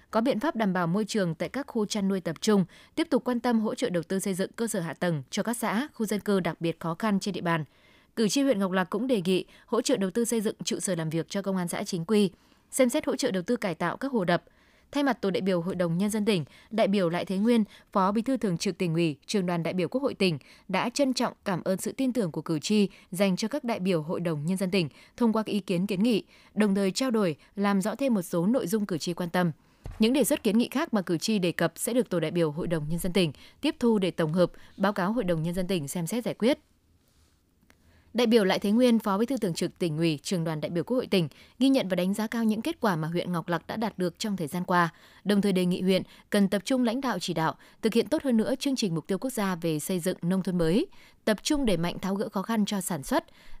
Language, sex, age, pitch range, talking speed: Vietnamese, female, 20-39, 180-230 Hz, 295 wpm